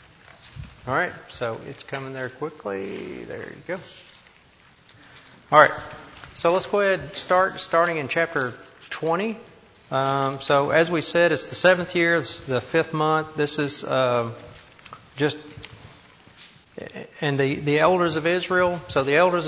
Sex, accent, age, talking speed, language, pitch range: male, American, 40-59, 150 wpm, English, 130-165 Hz